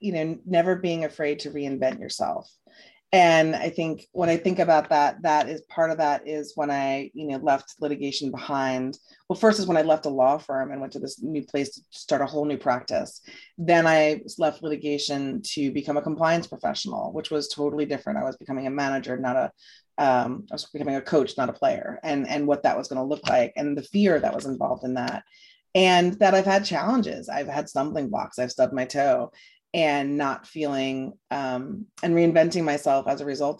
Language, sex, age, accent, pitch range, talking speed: English, female, 30-49, American, 140-170 Hz, 210 wpm